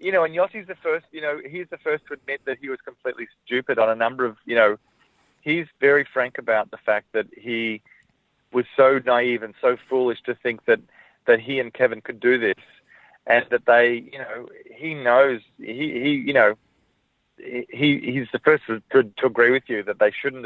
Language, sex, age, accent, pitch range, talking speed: English, male, 30-49, Australian, 115-145 Hz, 210 wpm